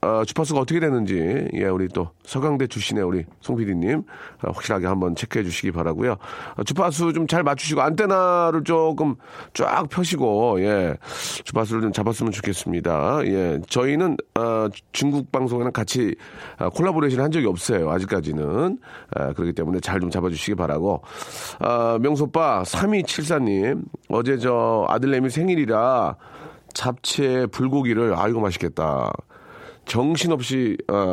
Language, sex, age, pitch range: Korean, male, 40-59, 100-145 Hz